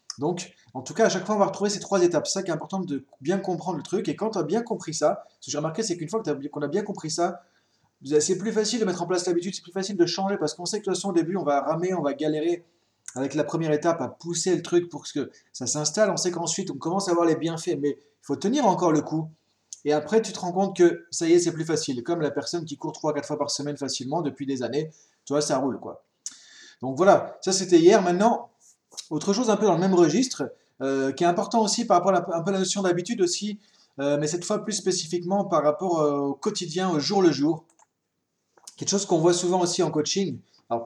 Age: 30-49